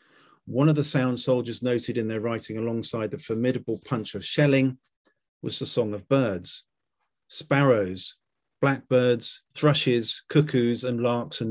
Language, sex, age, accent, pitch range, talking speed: English, male, 40-59, British, 115-140 Hz, 140 wpm